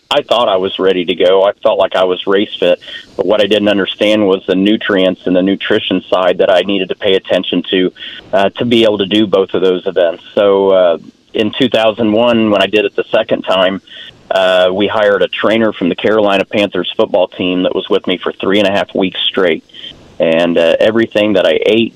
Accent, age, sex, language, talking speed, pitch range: American, 40-59, male, English, 225 wpm, 95-110 Hz